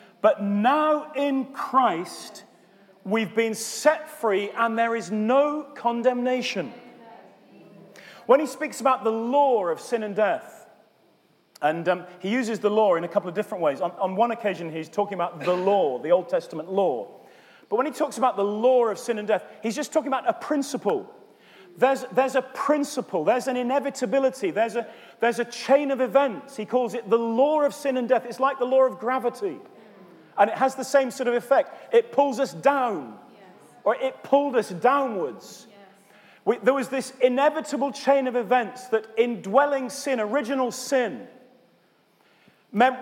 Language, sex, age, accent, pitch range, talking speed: English, male, 30-49, British, 225-275 Hz, 170 wpm